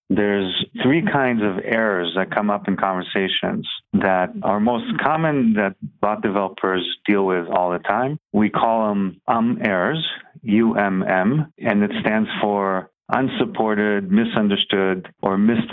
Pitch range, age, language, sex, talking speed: 95-115 Hz, 40-59, English, male, 135 wpm